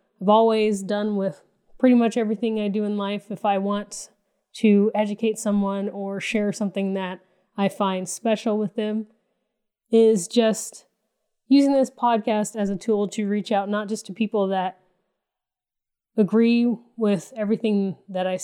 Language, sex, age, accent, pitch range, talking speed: English, female, 20-39, American, 195-225 Hz, 155 wpm